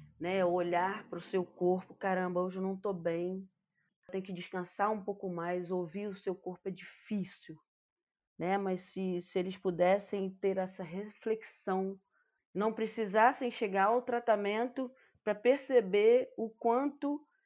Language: Portuguese